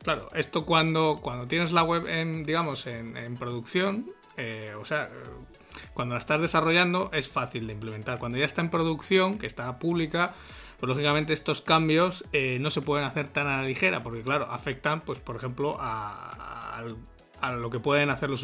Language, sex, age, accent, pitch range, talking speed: Spanish, male, 30-49, Spanish, 125-155 Hz, 190 wpm